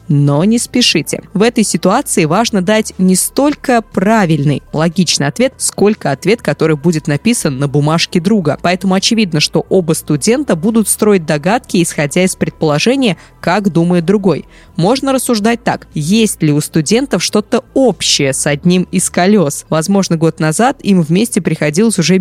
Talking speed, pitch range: 150 wpm, 165-215 Hz